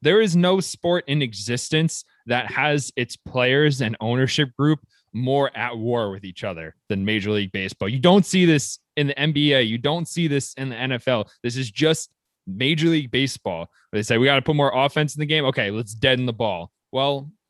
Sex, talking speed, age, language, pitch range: male, 205 wpm, 20-39, English, 115-155 Hz